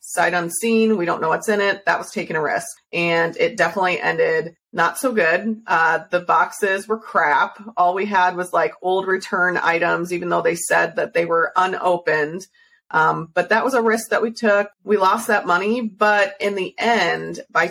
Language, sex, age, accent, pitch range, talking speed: English, female, 30-49, American, 175-220 Hz, 200 wpm